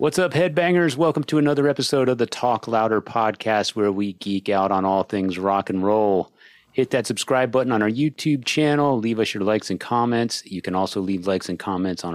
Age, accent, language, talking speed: 30-49, American, English, 215 wpm